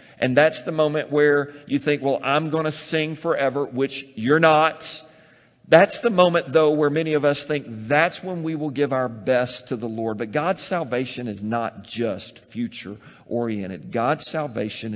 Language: English